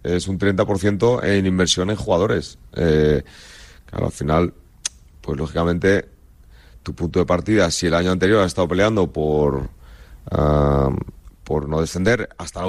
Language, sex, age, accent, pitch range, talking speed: Spanish, male, 40-59, Spanish, 85-100 Hz, 145 wpm